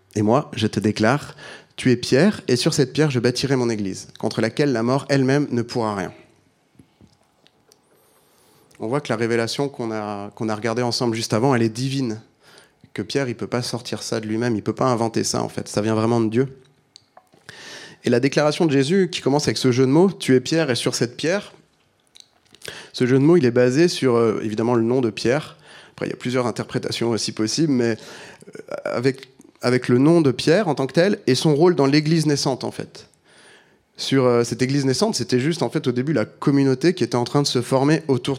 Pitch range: 115-140 Hz